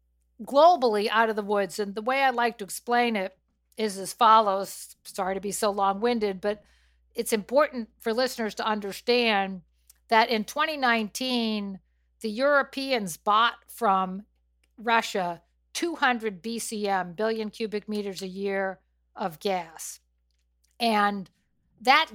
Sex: female